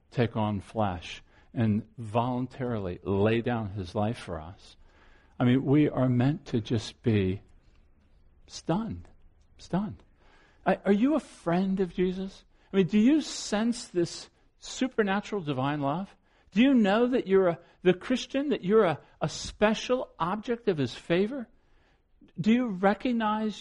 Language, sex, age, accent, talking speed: English, male, 50-69, American, 145 wpm